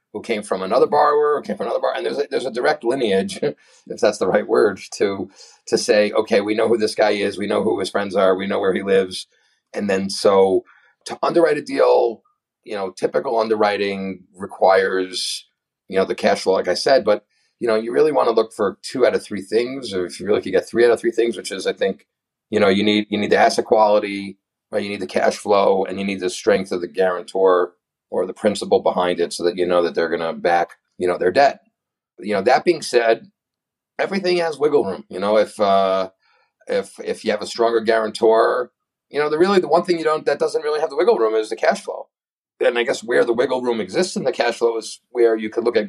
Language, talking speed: English, 245 wpm